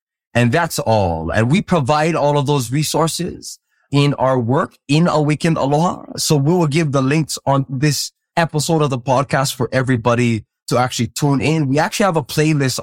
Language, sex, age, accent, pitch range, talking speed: English, male, 20-39, American, 125-165 Hz, 180 wpm